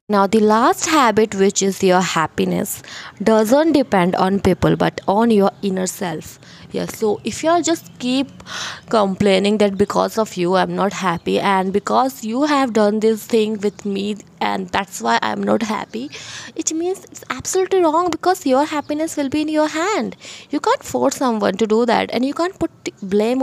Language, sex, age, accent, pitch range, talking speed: English, female, 20-39, Indian, 195-275 Hz, 180 wpm